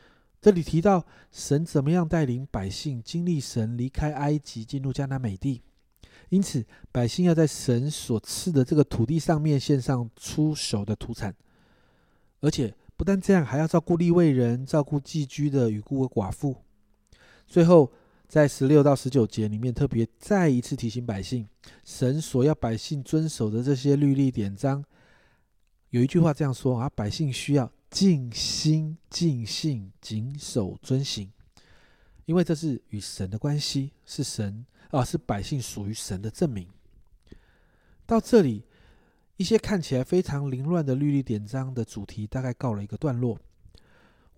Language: Chinese